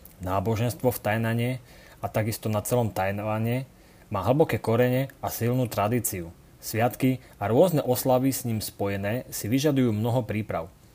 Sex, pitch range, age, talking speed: male, 110-135 Hz, 30-49, 135 wpm